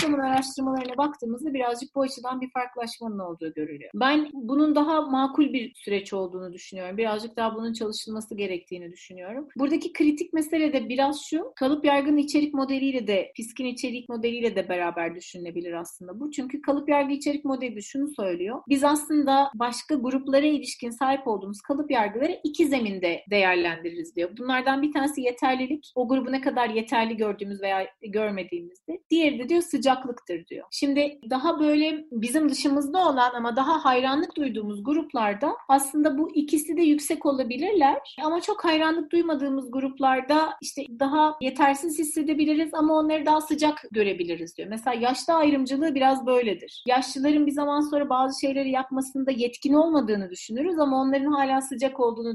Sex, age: female, 40-59